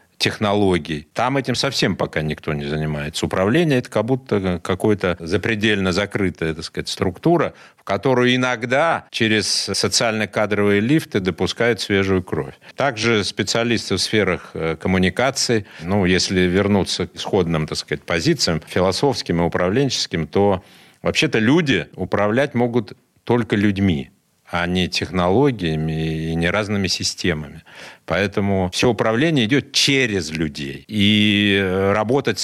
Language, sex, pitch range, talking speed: Russian, male, 85-115 Hz, 110 wpm